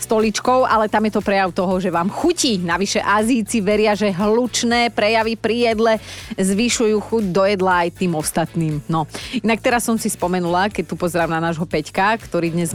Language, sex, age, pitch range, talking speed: Slovak, female, 30-49, 180-235 Hz, 185 wpm